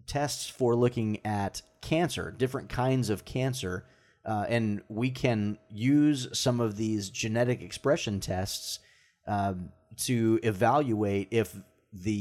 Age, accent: 30-49, American